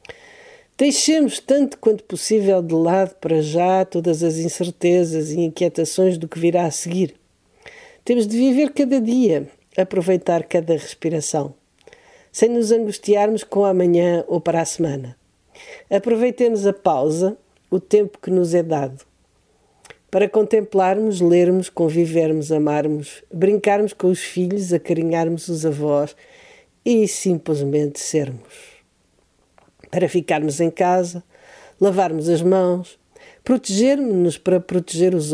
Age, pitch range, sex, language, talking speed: 50-69, 165-215 Hz, female, Portuguese, 120 wpm